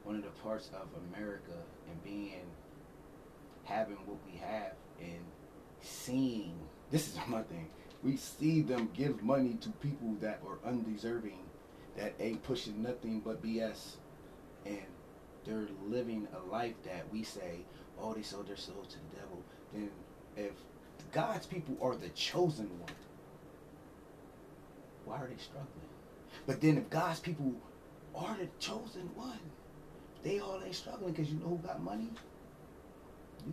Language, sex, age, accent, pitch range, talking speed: English, male, 30-49, American, 110-160 Hz, 145 wpm